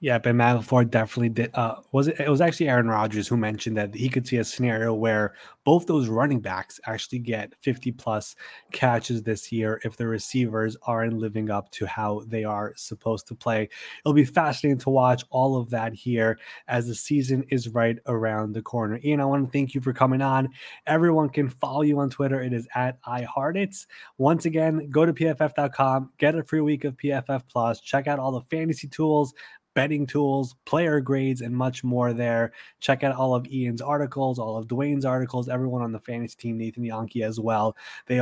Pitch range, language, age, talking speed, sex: 115-140 Hz, English, 20-39, 200 wpm, male